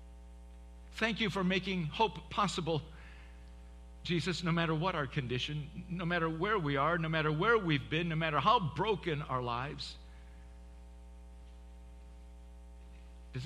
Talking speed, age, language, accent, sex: 130 wpm, 50-69, English, American, male